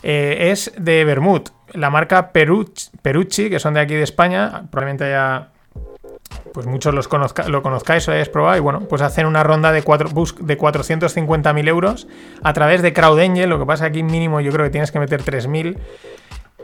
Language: Spanish